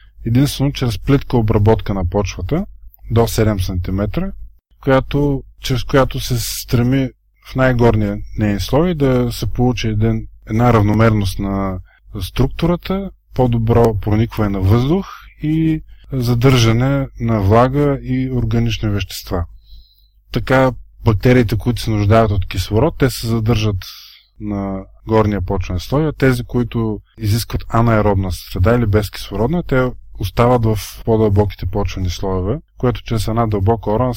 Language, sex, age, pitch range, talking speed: Bulgarian, male, 20-39, 105-125 Hz, 120 wpm